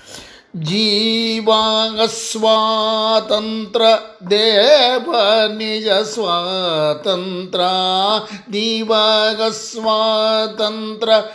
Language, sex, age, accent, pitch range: Kannada, male, 50-69, native, 195-270 Hz